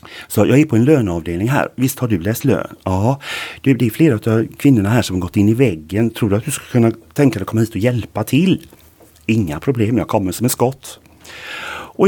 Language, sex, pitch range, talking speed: Swedish, male, 95-130 Hz, 235 wpm